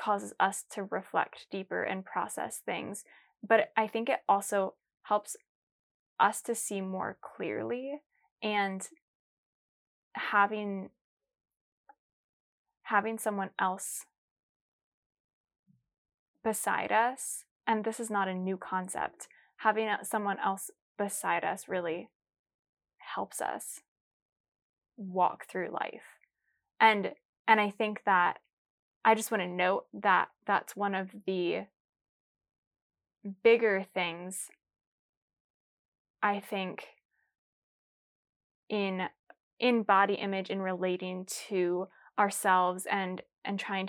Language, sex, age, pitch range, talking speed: English, female, 10-29, 190-220 Hz, 100 wpm